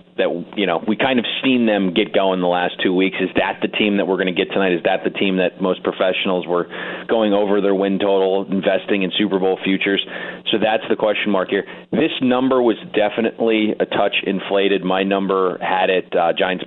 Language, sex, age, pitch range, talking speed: English, male, 30-49, 90-105 Hz, 220 wpm